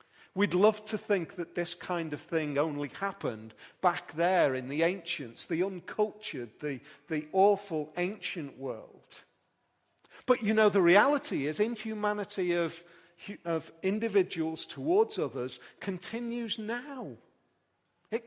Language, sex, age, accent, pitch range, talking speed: English, male, 40-59, British, 140-200 Hz, 125 wpm